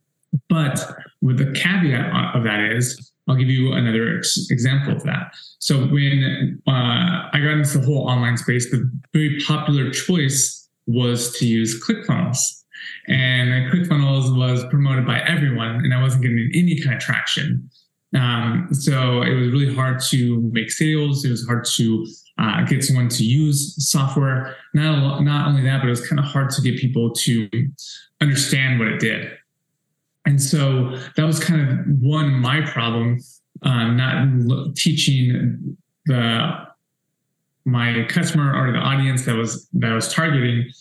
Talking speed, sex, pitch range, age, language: 155 wpm, male, 120-150 Hz, 20-39, English